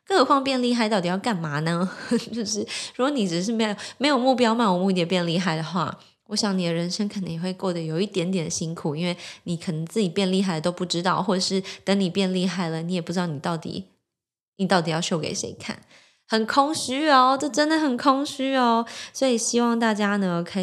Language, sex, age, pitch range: Chinese, female, 20-39, 170-215 Hz